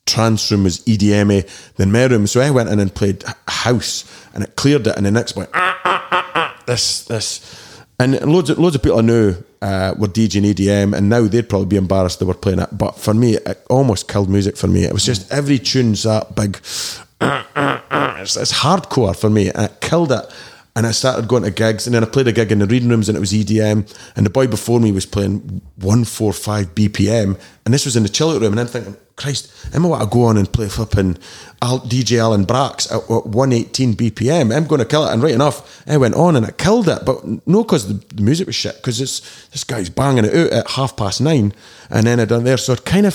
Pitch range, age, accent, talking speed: 105-125 Hz, 30-49, British, 250 wpm